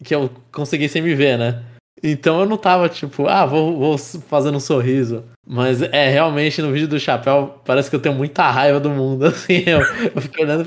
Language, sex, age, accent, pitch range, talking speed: Portuguese, male, 20-39, Brazilian, 125-155 Hz, 220 wpm